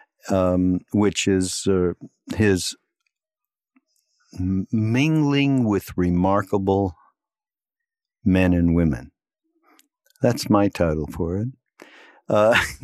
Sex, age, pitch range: male, 60-79, 95-120 Hz